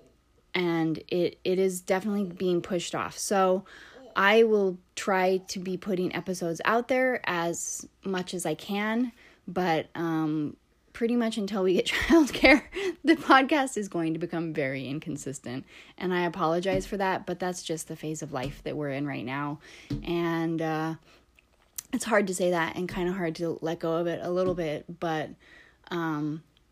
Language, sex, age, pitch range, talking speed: English, female, 20-39, 155-195 Hz, 175 wpm